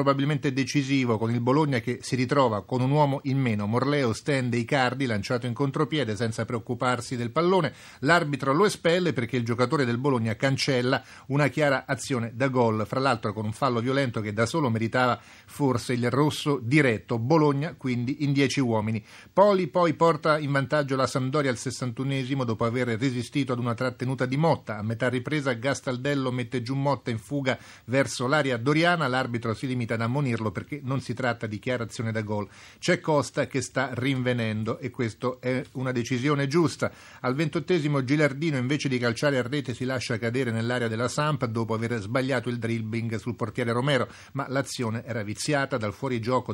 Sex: male